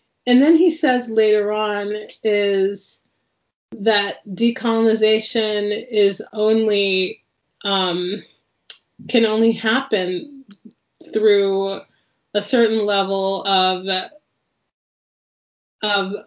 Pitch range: 195-225 Hz